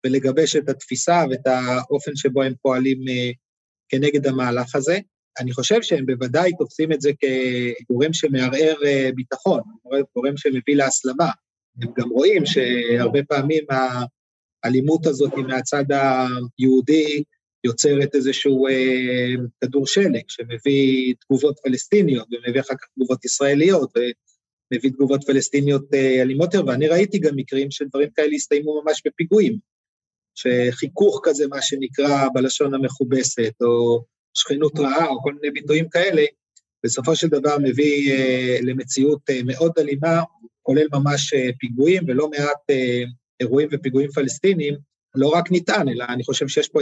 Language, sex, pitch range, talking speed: Hebrew, male, 130-150 Hz, 125 wpm